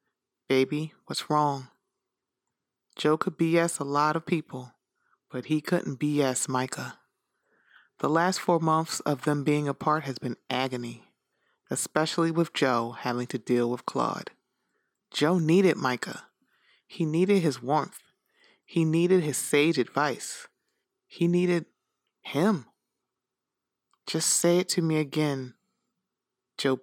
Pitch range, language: 130-170 Hz, English